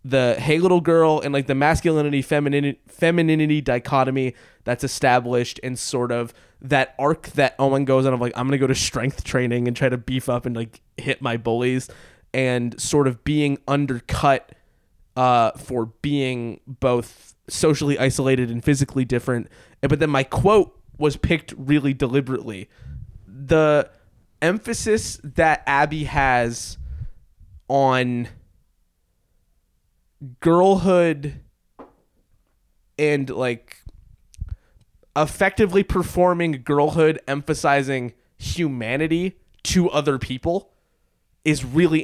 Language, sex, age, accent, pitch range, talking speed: English, male, 20-39, American, 125-155 Hz, 115 wpm